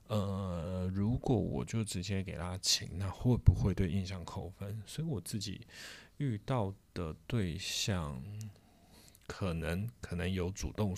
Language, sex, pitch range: Chinese, male, 90-110 Hz